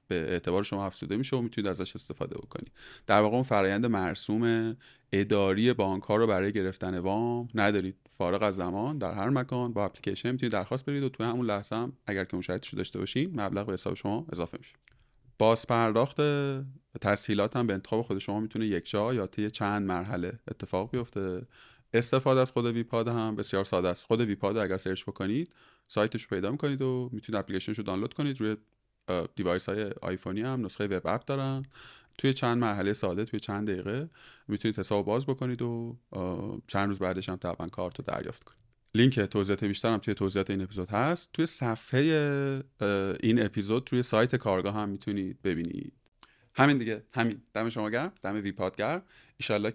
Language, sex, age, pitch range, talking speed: Persian, male, 30-49, 100-120 Hz, 175 wpm